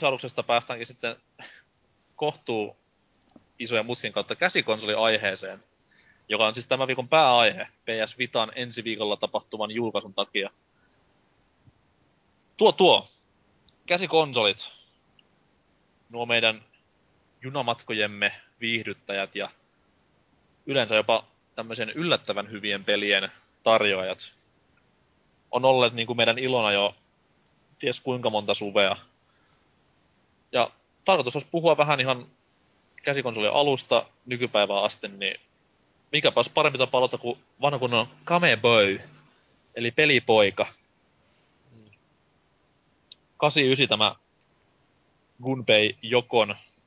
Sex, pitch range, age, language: male, 105-130 Hz, 20-39, Finnish